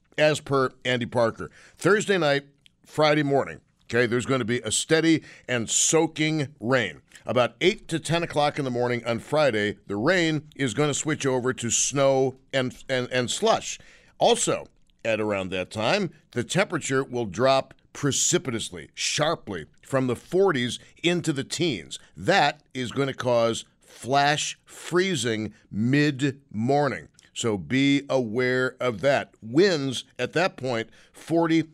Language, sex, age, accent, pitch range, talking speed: English, male, 50-69, American, 120-155 Hz, 145 wpm